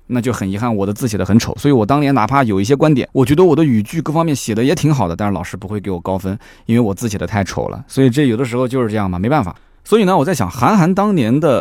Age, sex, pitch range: 20-39, male, 95-125 Hz